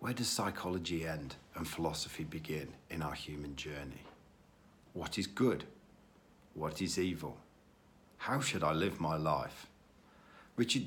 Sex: male